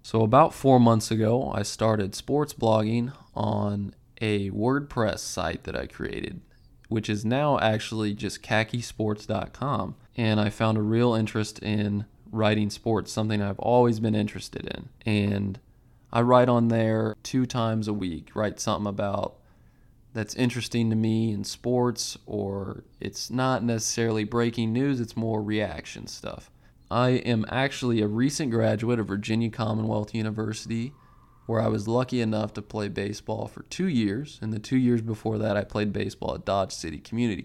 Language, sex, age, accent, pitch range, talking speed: English, male, 20-39, American, 105-120 Hz, 160 wpm